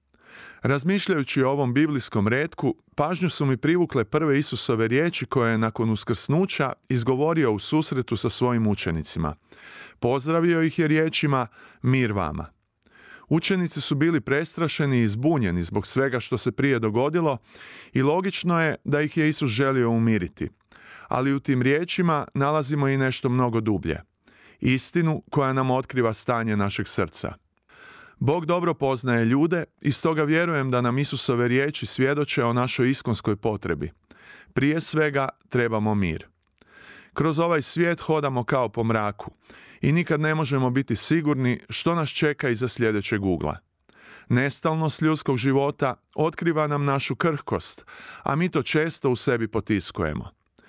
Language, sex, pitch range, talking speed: Croatian, male, 120-155 Hz, 140 wpm